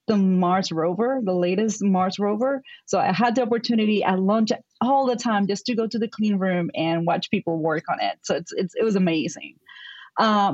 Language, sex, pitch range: English, female, 175-215 Hz